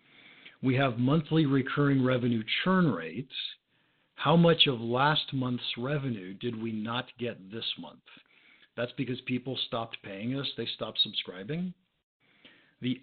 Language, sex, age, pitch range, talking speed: English, male, 50-69, 115-140 Hz, 135 wpm